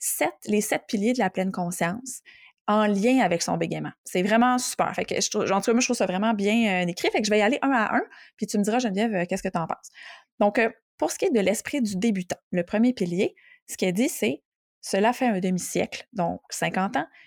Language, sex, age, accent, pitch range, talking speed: French, female, 20-39, Canadian, 185-245 Hz, 250 wpm